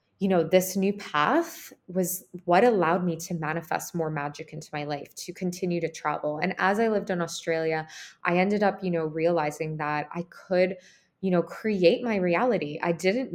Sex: female